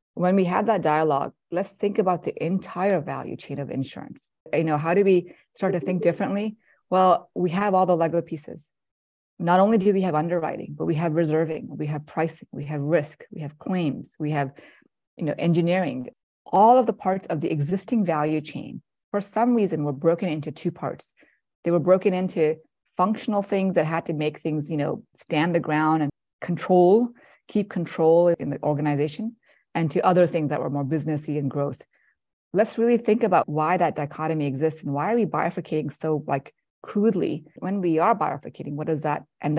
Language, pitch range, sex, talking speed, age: English, 150-190 Hz, female, 195 wpm, 30-49